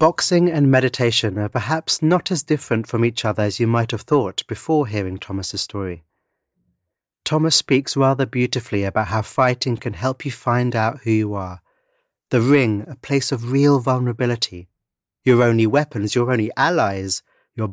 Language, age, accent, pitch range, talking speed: English, 30-49, British, 105-135 Hz, 165 wpm